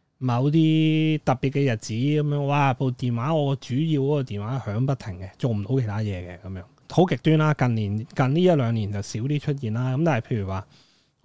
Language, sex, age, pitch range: Chinese, male, 30-49, 115-155 Hz